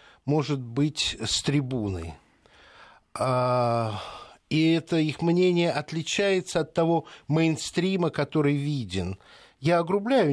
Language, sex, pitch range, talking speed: Russian, male, 115-165 Hz, 100 wpm